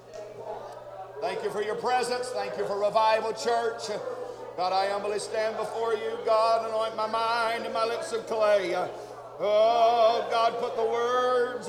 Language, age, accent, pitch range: English, 50-69, American, 190-260 Hz